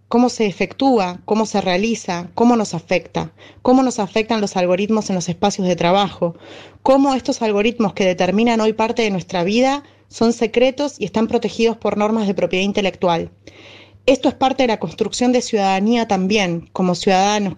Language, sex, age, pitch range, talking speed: Spanish, female, 30-49, 185-230 Hz, 170 wpm